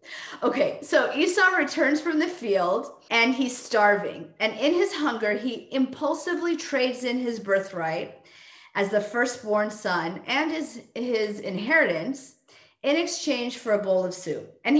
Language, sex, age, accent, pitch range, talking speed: English, female, 40-59, American, 195-285 Hz, 145 wpm